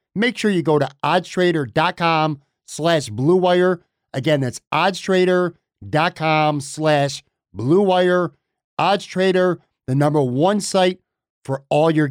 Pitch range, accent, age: 115-155 Hz, American, 50-69